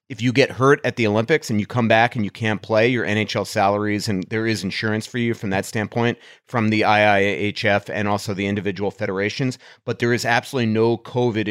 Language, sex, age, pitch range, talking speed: English, male, 30-49, 100-120 Hz, 215 wpm